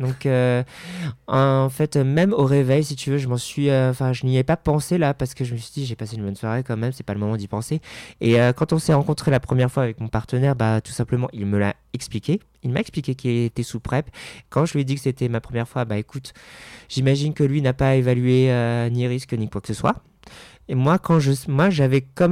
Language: French